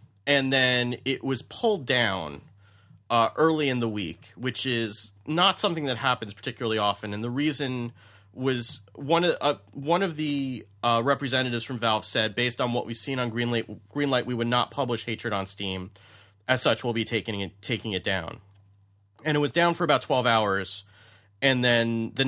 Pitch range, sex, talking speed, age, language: 105-130 Hz, male, 185 wpm, 30-49, English